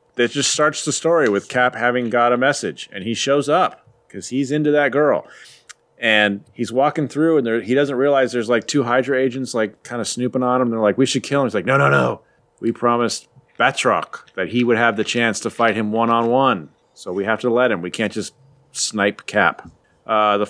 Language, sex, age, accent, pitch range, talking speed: English, male, 30-49, American, 115-140 Hz, 230 wpm